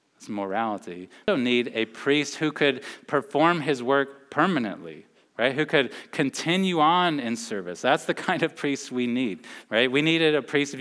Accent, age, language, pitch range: American, 30-49, English, 110-145 Hz